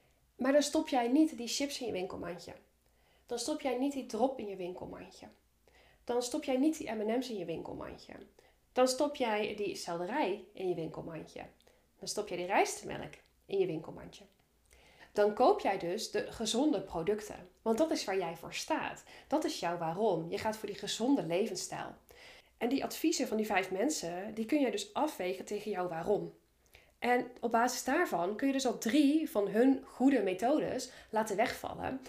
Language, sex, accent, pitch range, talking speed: Dutch, female, Dutch, 195-300 Hz, 185 wpm